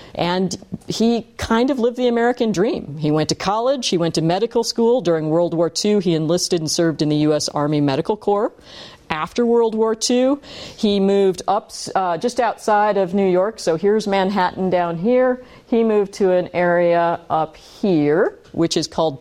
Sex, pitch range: female, 160-215 Hz